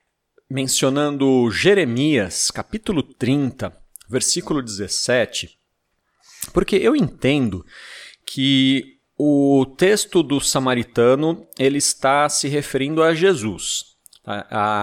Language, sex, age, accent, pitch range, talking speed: Portuguese, male, 40-59, Brazilian, 120-165 Hz, 85 wpm